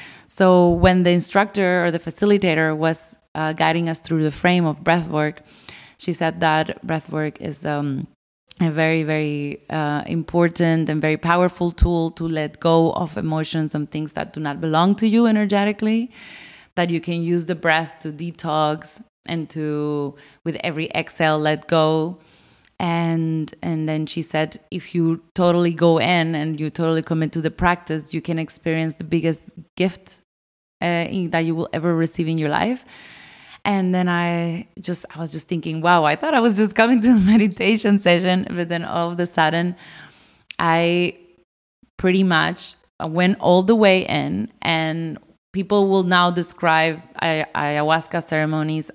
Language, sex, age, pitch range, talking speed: German, female, 20-39, 155-180 Hz, 165 wpm